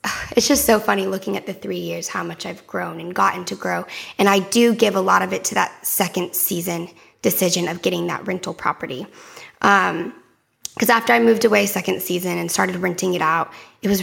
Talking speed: 215 wpm